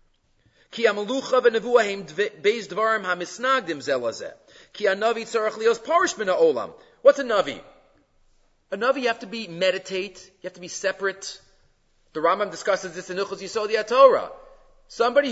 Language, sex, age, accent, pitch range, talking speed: English, male, 40-59, Canadian, 195-270 Hz, 95 wpm